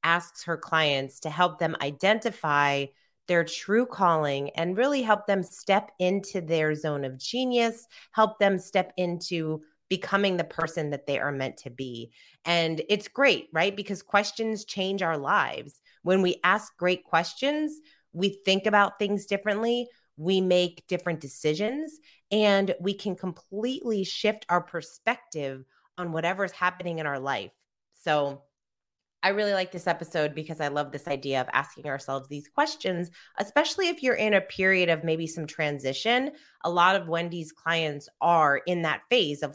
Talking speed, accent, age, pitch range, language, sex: 160 wpm, American, 30-49, 155-210 Hz, English, female